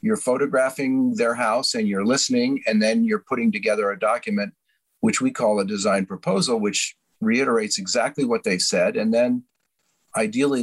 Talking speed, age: 165 wpm, 40-59